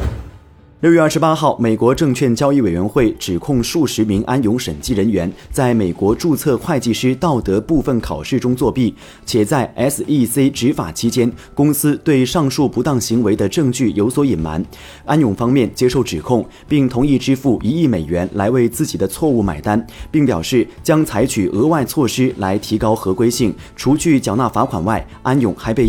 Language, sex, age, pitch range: Chinese, male, 30-49, 100-140 Hz